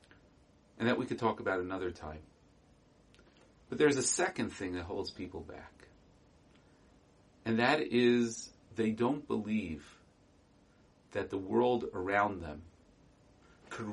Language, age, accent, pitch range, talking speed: English, 40-59, American, 90-130 Hz, 125 wpm